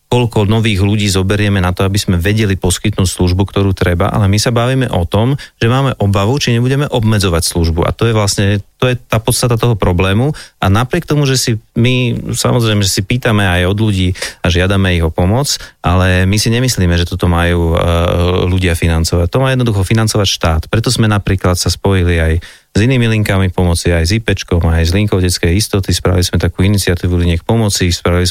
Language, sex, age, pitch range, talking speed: Slovak, male, 30-49, 90-110 Hz, 200 wpm